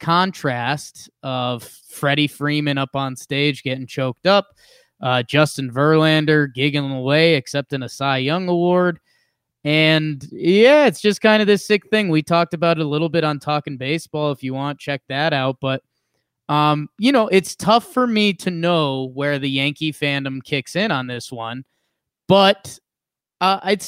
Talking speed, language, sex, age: 170 wpm, English, male, 20-39